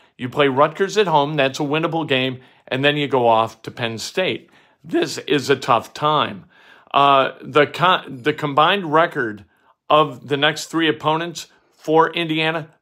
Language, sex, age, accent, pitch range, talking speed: English, male, 50-69, American, 140-185 Hz, 165 wpm